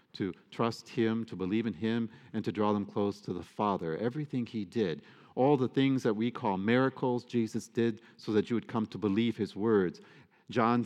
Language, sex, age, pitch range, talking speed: English, male, 40-59, 110-135 Hz, 205 wpm